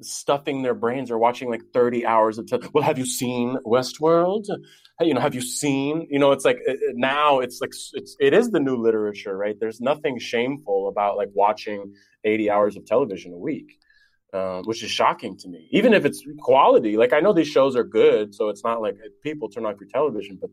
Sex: male